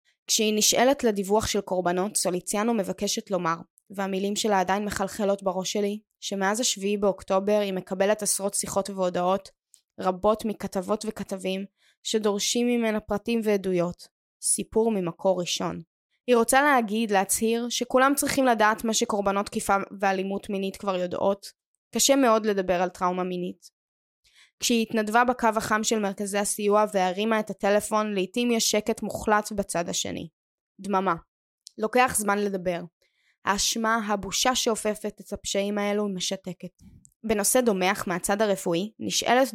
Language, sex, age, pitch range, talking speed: Hebrew, female, 20-39, 195-220 Hz, 125 wpm